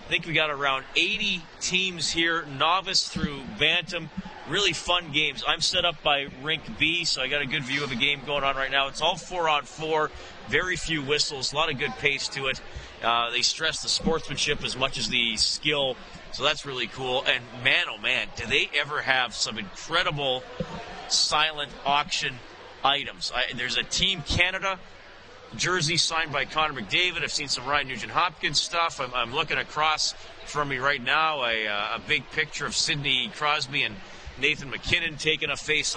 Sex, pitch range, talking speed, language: male, 140-175 Hz, 190 wpm, English